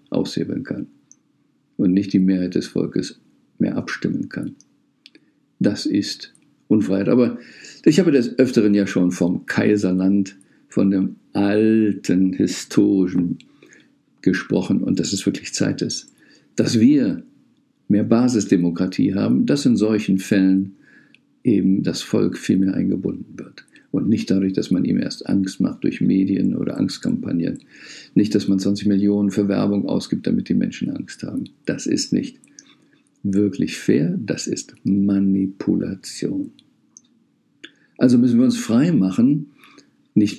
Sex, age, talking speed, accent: male, 50-69, 135 wpm, German